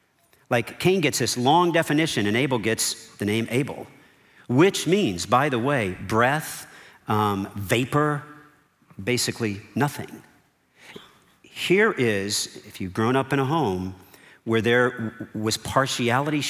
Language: English